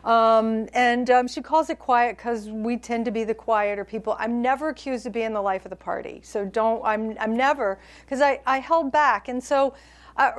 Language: English